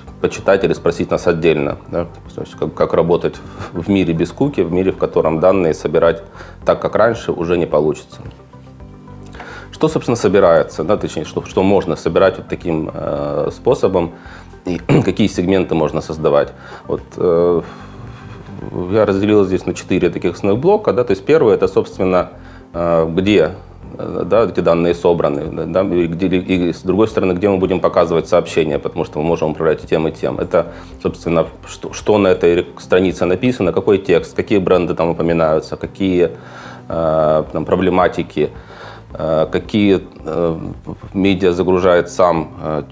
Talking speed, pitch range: 155 wpm, 80-95 Hz